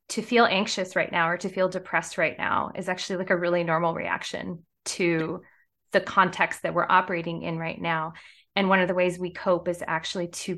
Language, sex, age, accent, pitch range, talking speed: English, female, 20-39, American, 175-205 Hz, 210 wpm